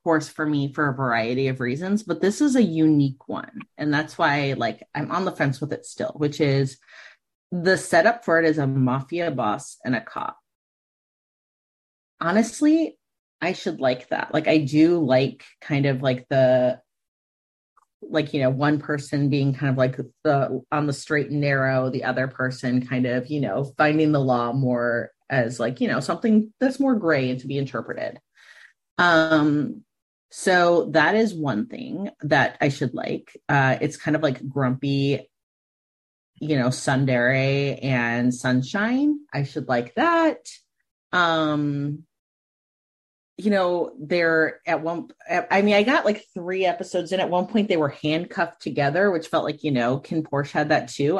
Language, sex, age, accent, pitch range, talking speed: English, female, 30-49, American, 135-180 Hz, 170 wpm